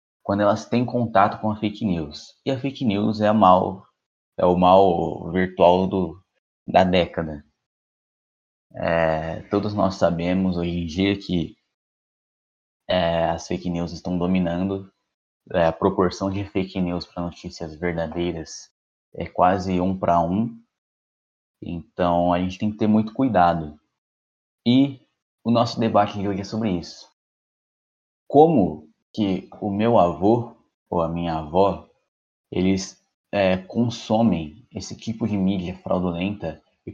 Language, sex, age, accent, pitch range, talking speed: Portuguese, male, 20-39, Brazilian, 85-105 Hz, 135 wpm